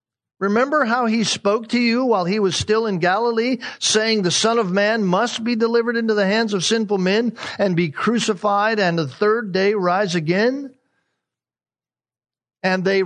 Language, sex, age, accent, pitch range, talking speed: English, male, 50-69, American, 140-225 Hz, 170 wpm